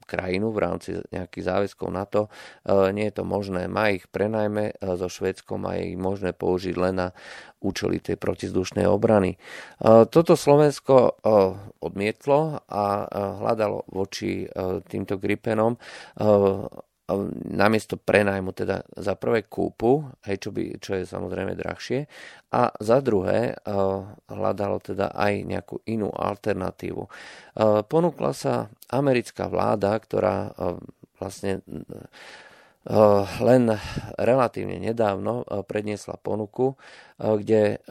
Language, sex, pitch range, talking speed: Slovak, male, 95-105 Hz, 110 wpm